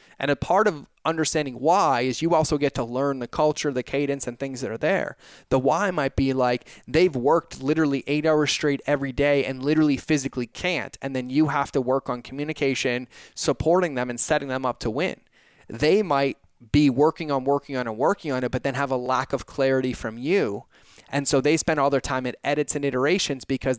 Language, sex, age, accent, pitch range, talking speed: English, male, 30-49, American, 130-150 Hz, 215 wpm